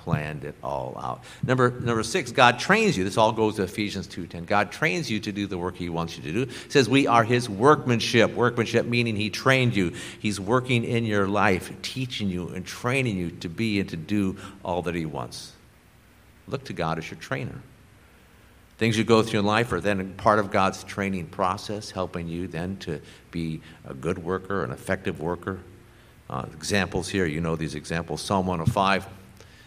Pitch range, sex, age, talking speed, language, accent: 90-115 Hz, male, 50-69, 195 wpm, English, American